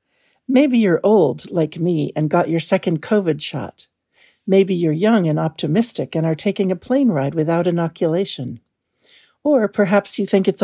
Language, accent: English, American